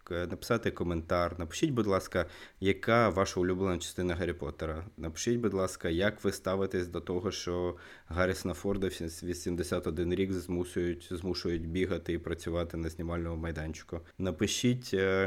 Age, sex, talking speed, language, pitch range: 20-39, male, 135 wpm, Ukrainian, 85-95 Hz